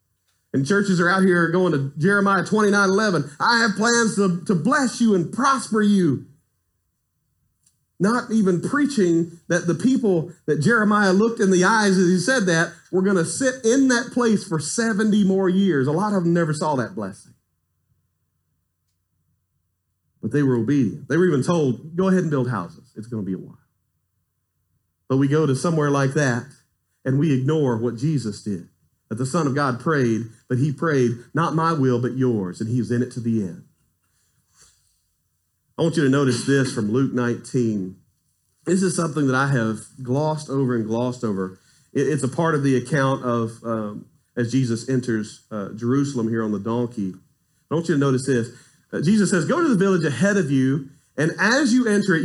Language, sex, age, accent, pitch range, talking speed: English, male, 40-59, American, 120-190 Hz, 190 wpm